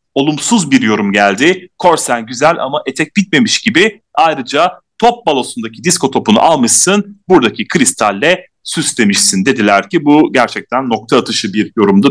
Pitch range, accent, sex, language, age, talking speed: 120-195 Hz, native, male, Turkish, 40-59, 135 wpm